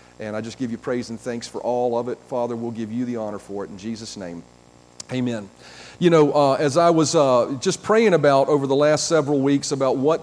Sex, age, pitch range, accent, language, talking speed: male, 40-59, 120-150 Hz, American, English, 240 wpm